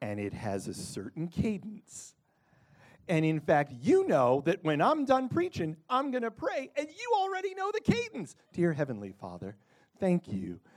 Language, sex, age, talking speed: English, male, 40-59, 175 wpm